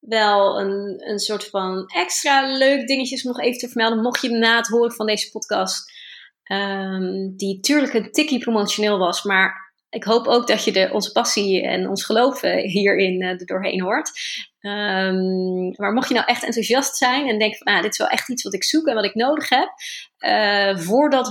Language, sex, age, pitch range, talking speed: Dutch, female, 30-49, 195-235 Hz, 190 wpm